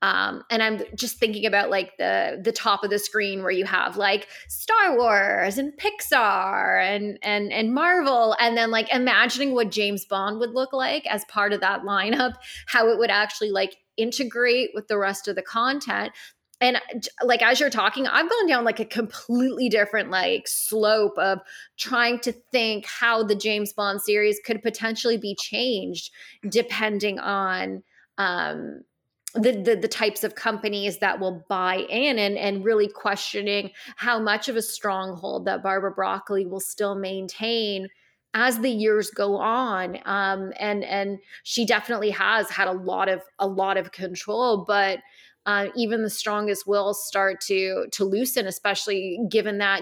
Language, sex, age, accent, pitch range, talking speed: English, female, 20-39, American, 195-230 Hz, 170 wpm